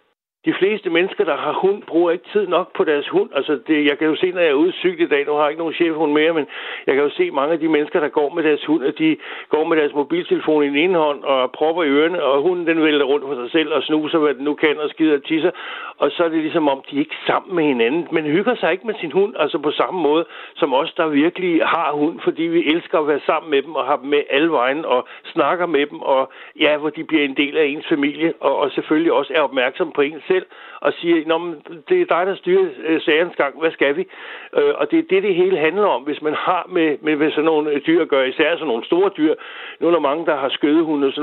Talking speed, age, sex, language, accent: 275 wpm, 60-79, male, Danish, native